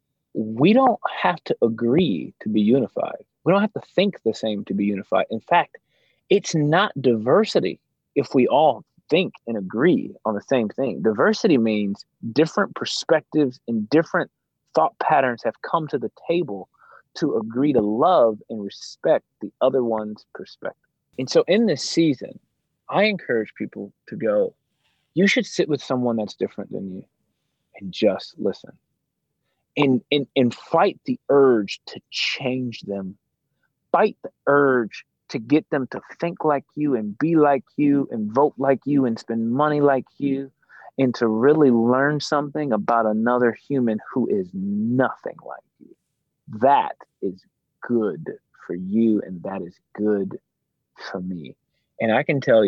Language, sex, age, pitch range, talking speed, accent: English, male, 30-49, 110-150 Hz, 155 wpm, American